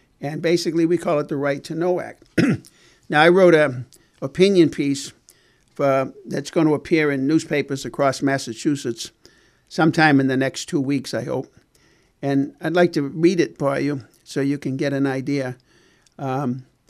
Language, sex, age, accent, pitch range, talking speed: English, male, 60-79, American, 140-165 Hz, 165 wpm